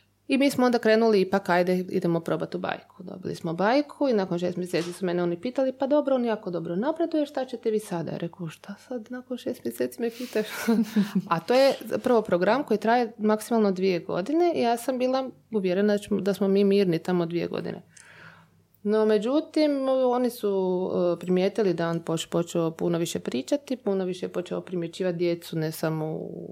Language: Croatian